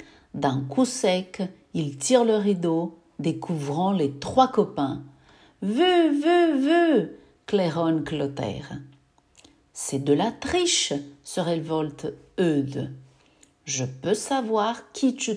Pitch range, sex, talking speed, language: 145-225 Hz, female, 125 wpm, French